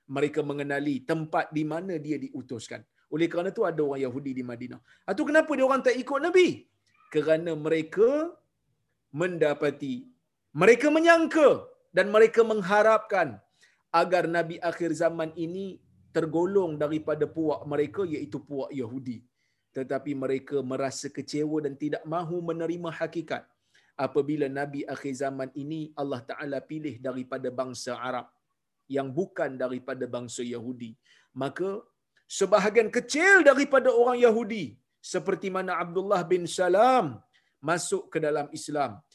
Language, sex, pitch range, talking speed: Malayalam, male, 135-180 Hz, 125 wpm